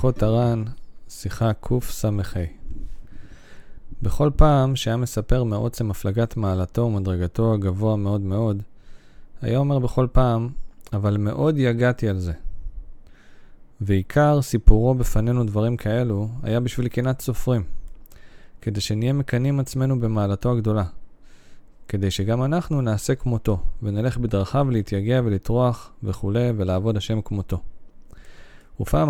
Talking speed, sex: 105 wpm, male